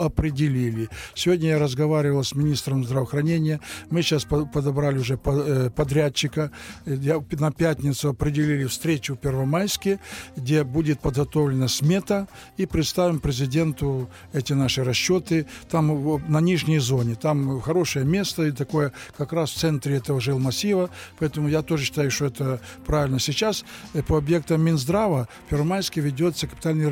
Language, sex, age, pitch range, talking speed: Russian, male, 60-79, 140-155 Hz, 130 wpm